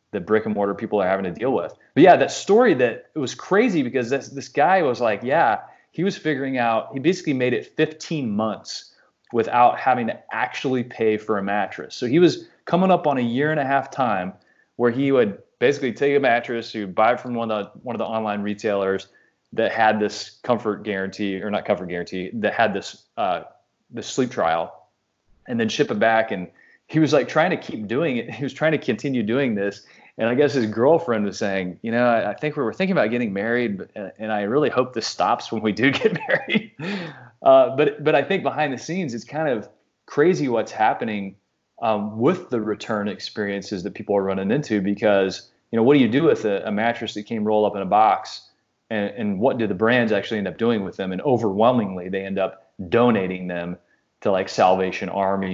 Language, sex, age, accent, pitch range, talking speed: English, male, 20-39, American, 100-130 Hz, 225 wpm